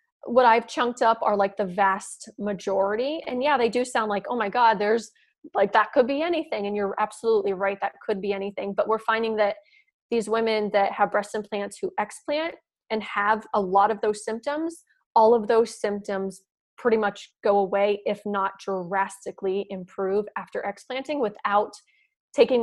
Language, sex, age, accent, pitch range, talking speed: English, female, 20-39, American, 200-245 Hz, 180 wpm